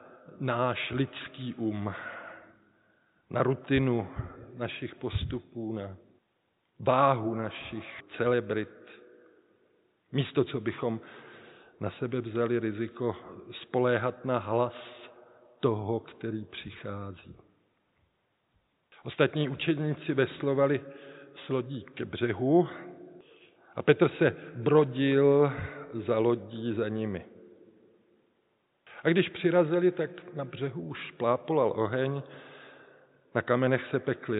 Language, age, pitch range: Czech, 50-69, 115-135 Hz